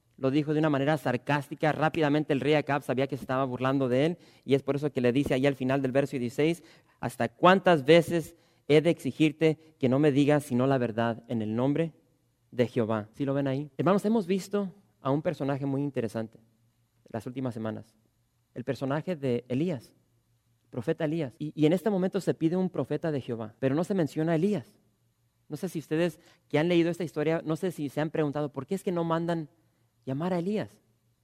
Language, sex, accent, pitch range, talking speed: English, male, Mexican, 130-165 Hz, 215 wpm